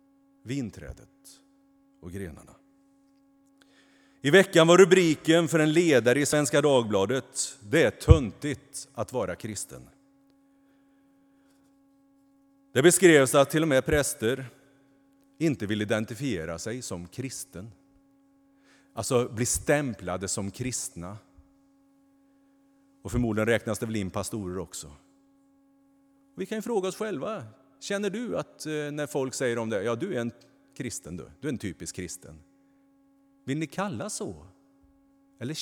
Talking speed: 125 wpm